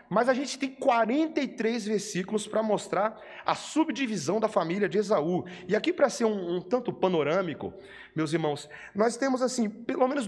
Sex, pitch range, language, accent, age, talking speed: male, 170-225 Hz, Portuguese, Brazilian, 40-59, 170 wpm